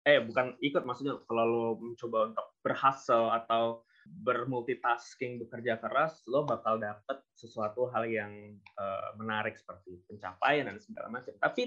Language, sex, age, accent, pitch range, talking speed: Indonesian, male, 20-39, native, 115-150 Hz, 140 wpm